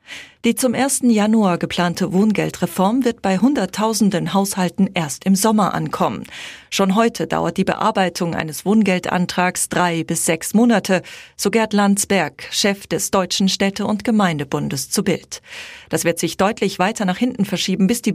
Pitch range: 175-215 Hz